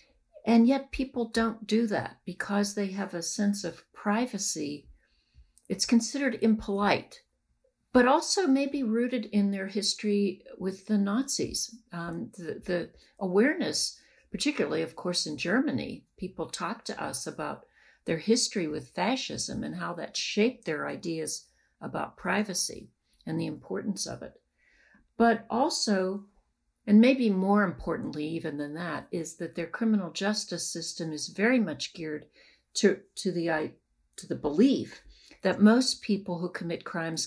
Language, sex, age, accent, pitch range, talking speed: English, female, 60-79, American, 170-220 Hz, 140 wpm